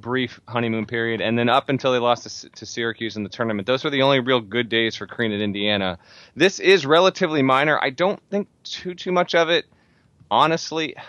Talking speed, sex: 215 wpm, male